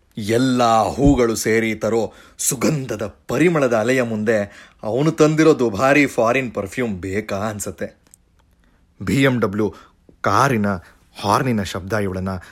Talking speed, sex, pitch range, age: 100 wpm, male, 95-140 Hz, 30-49